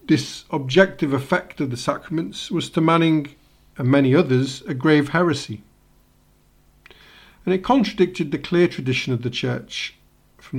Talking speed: 140 wpm